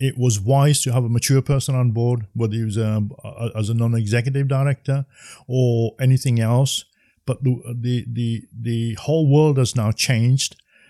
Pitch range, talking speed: 110-130 Hz, 175 wpm